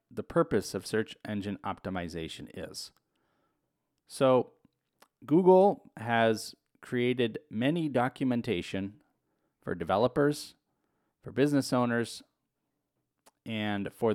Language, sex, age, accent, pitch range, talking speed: English, male, 30-49, American, 105-140 Hz, 85 wpm